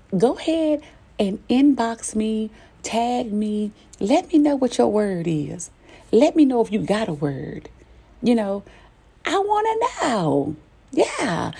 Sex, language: female, English